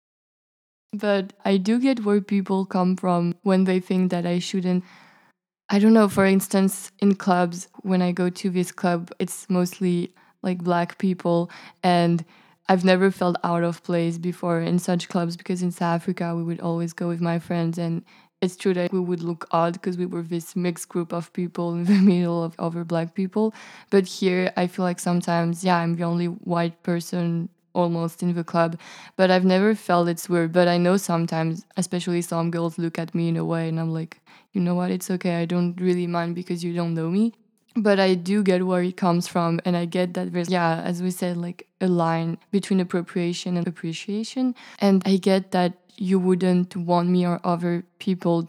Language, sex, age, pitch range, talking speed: English, female, 20-39, 170-190 Hz, 205 wpm